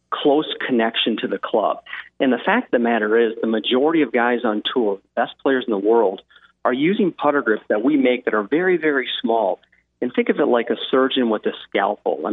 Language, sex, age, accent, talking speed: English, male, 40-59, American, 225 wpm